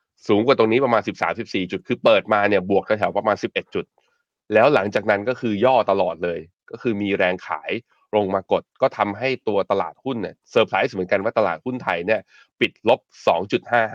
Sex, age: male, 20-39